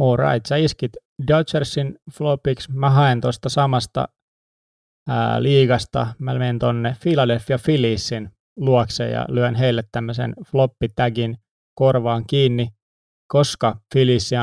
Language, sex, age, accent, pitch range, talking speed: Finnish, male, 20-39, native, 115-130 Hz, 115 wpm